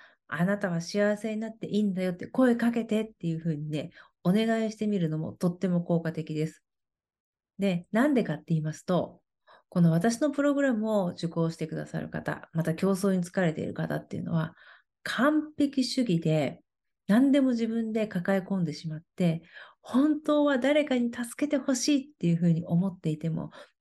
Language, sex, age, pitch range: Japanese, female, 40-59, 170-230 Hz